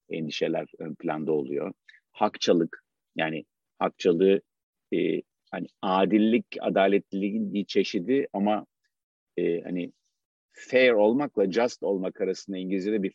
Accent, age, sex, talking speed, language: native, 50-69, male, 105 wpm, Turkish